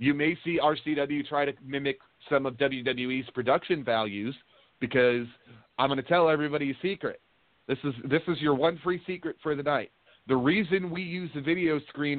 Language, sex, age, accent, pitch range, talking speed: English, male, 40-59, American, 130-160 Hz, 185 wpm